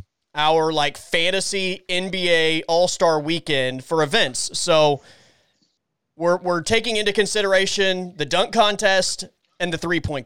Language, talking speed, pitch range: English, 115 wpm, 145-185 Hz